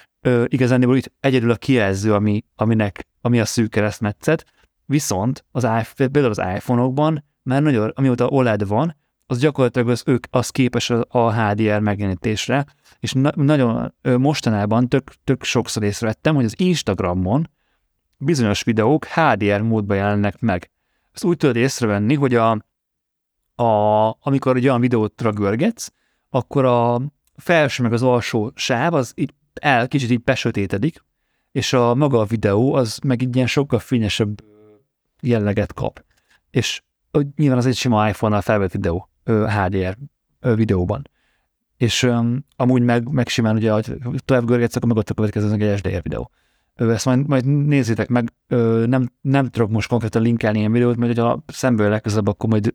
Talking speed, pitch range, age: 150 wpm, 105-130 Hz, 30-49